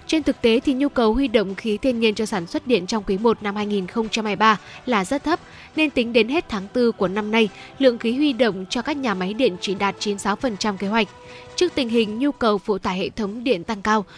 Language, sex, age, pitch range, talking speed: Vietnamese, female, 10-29, 210-255 Hz, 245 wpm